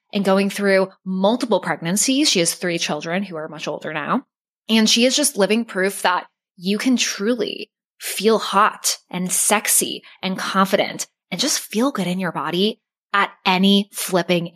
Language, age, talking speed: English, 20-39, 165 wpm